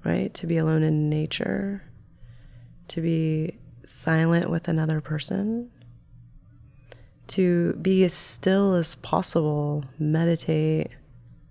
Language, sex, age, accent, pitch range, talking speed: English, female, 30-49, American, 120-170 Hz, 100 wpm